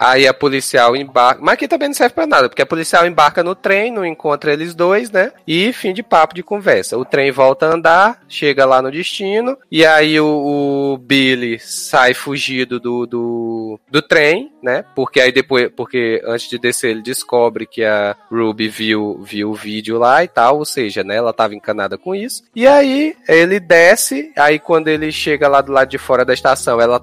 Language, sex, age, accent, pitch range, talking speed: Portuguese, male, 20-39, Brazilian, 130-180 Hz, 205 wpm